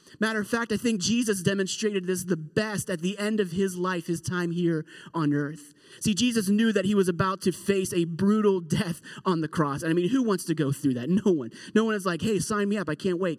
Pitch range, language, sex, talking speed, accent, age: 160-210 Hz, English, male, 260 wpm, American, 30-49